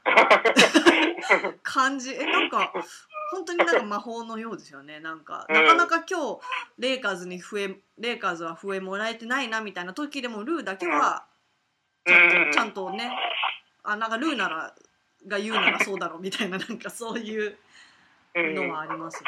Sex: female